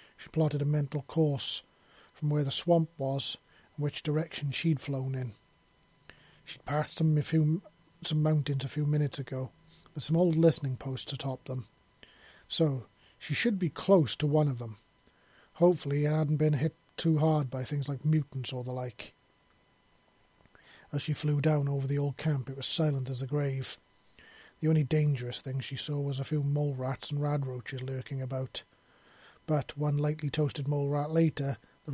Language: English